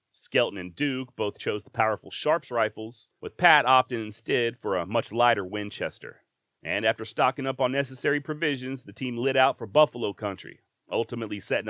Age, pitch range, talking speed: 30-49, 115-145 Hz, 175 wpm